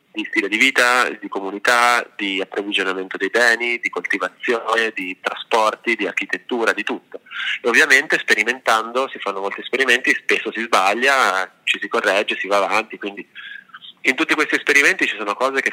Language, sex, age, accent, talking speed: Italian, male, 30-49, native, 160 wpm